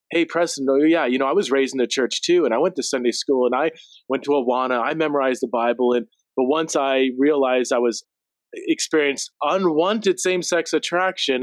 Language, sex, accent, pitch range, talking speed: English, male, American, 125-170 Hz, 200 wpm